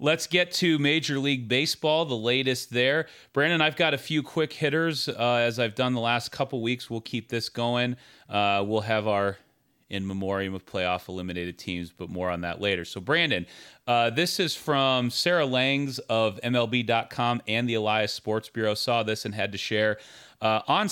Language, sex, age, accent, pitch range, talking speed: English, male, 30-49, American, 105-145 Hz, 185 wpm